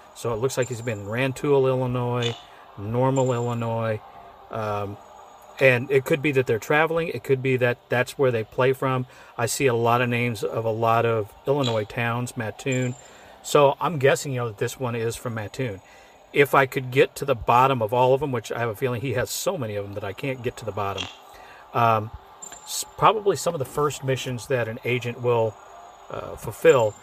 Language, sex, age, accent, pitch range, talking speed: English, male, 40-59, American, 115-135 Hz, 210 wpm